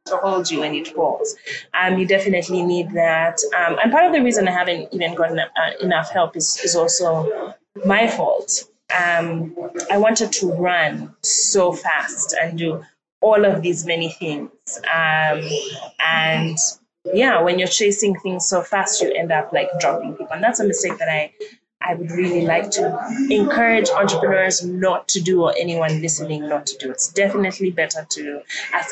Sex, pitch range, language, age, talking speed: female, 170-215 Hz, English, 20-39, 175 wpm